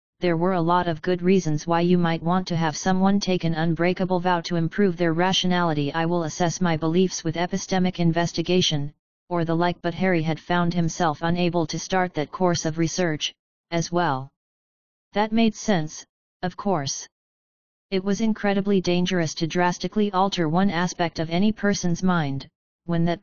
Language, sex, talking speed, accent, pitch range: English, female, 175 wpm, American, 165-190 Hz